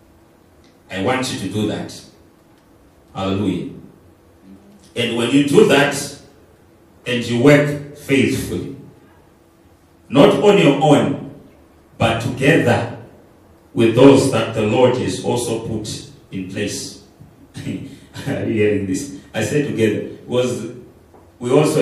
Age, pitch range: 40-59, 90-120 Hz